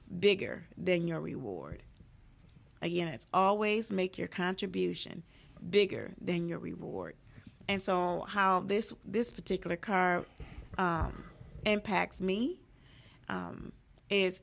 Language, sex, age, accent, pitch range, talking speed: English, female, 30-49, American, 170-200 Hz, 110 wpm